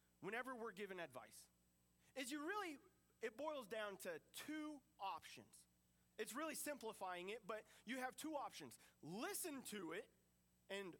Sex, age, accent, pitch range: male, 30-49, American, 195-270 Hz